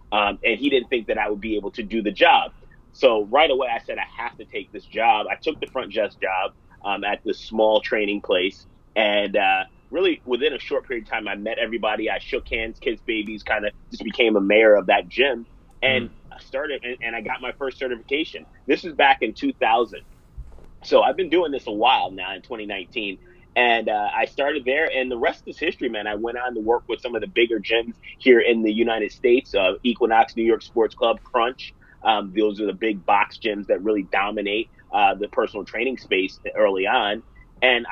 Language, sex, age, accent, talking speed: English, male, 30-49, American, 220 wpm